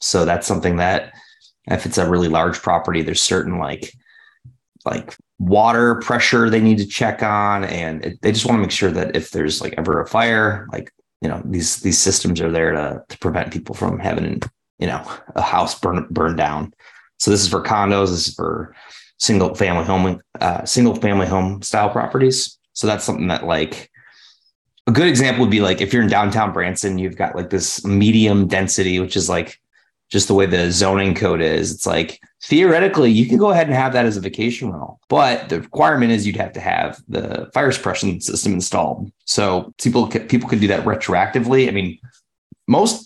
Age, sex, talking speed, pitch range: 20-39, male, 200 wpm, 95-115 Hz